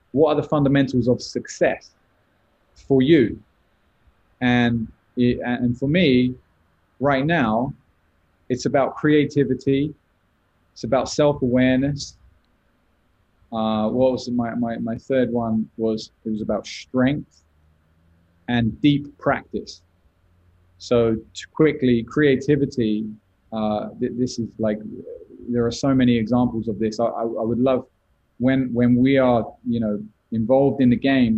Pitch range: 110-130 Hz